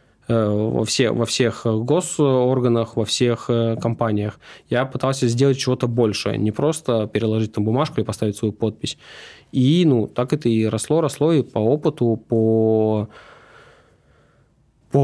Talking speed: 130 wpm